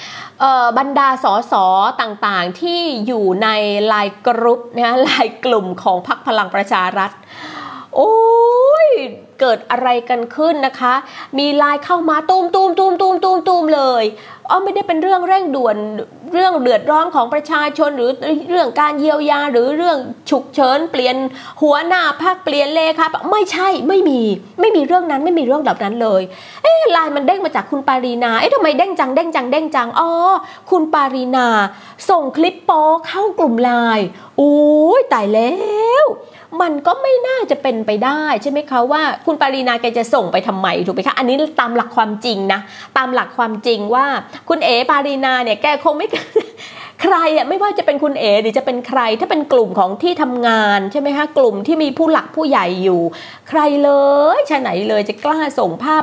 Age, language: 20-39, Thai